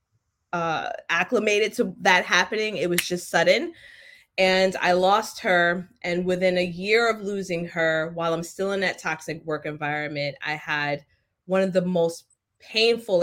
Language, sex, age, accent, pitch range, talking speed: English, female, 20-39, American, 155-190 Hz, 160 wpm